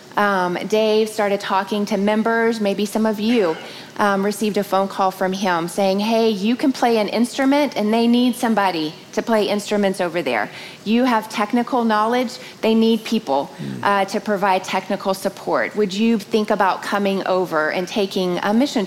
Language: English